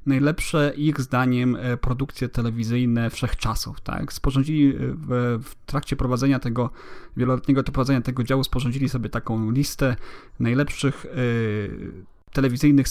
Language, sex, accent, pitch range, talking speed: Polish, male, native, 130-145 Hz, 105 wpm